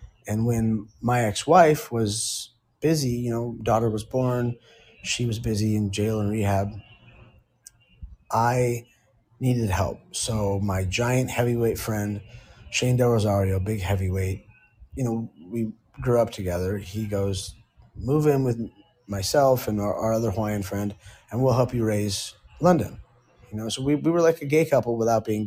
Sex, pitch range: male, 105-120 Hz